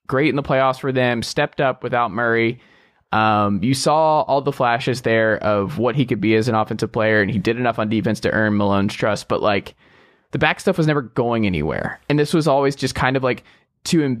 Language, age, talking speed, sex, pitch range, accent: English, 20-39, 230 wpm, male, 110-145 Hz, American